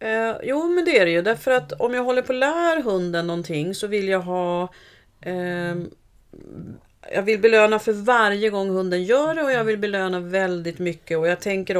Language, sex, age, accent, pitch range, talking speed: Swedish, female, 40-59, native, 175-225 Hz, 205 wpm